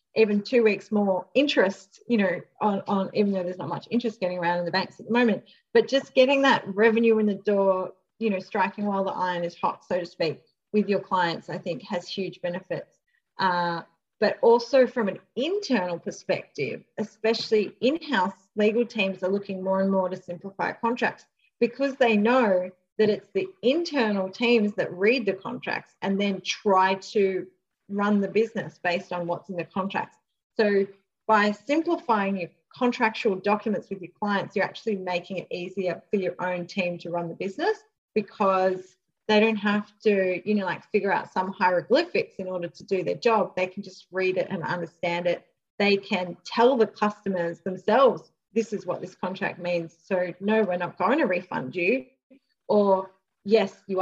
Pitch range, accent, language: 180-220 Hz, Australian, English